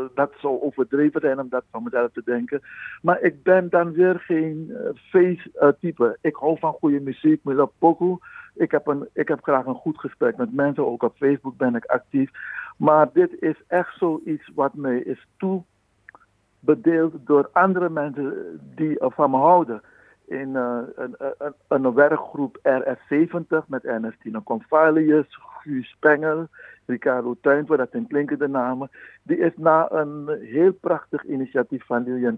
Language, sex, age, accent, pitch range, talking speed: Dutch, male, 60-79, Dutch, 135-165 Hz, 160 wpm